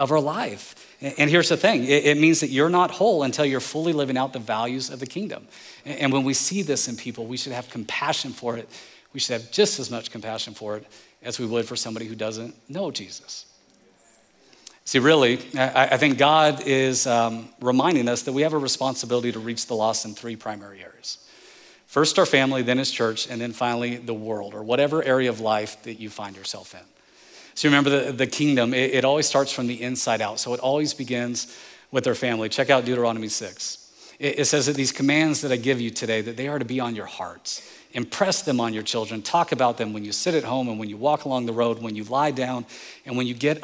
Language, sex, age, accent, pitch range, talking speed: English, male, 40-59, American, 115-145 Hz, 230 wpm